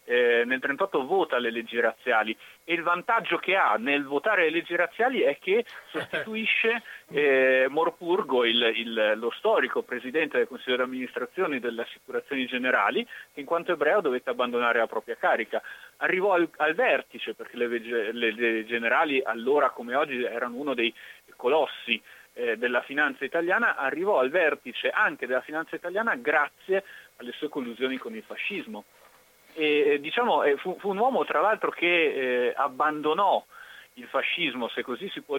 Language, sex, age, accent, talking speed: Italian, male, 40-59, native, 150 wpm